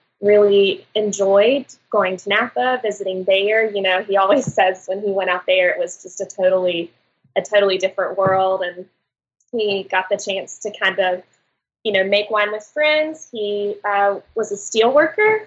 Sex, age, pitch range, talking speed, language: female, 20-39, 190-225 Hz, 180 wpm, English